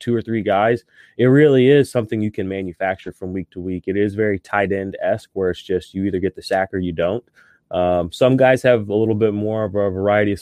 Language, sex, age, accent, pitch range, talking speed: English, male, 20-39, American, 90-115 Hz, 255 wpm